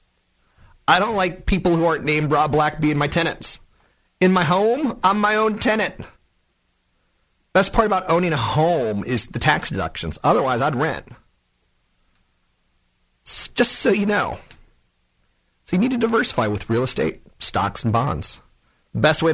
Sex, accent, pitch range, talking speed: male, American, 100-150 Hz, 150 wpm